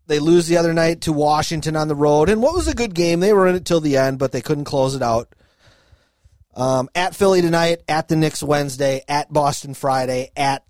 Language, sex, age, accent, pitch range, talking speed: English, male, 30-49, American, 120-155 Hz, 230 wpm